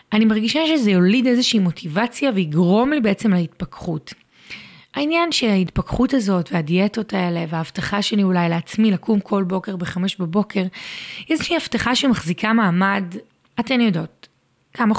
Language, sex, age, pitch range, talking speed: Hebrew, female, 30-49, 180-220 Hz, 130 wpm